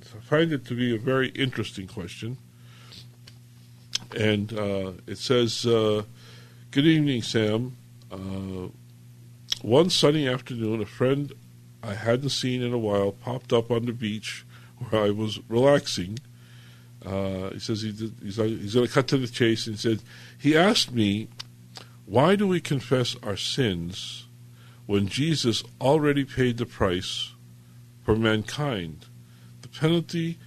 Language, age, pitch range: English, 50-69, 105-125 Hz